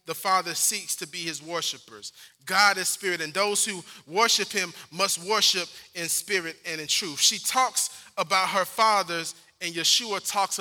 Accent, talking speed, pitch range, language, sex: American, 170 wpm, 180-220 Hz, English, male